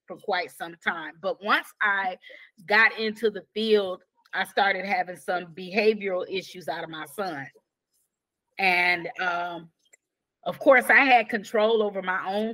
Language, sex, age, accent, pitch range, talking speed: English, female, 30-49, American, 180-220 Hz, 150 wpm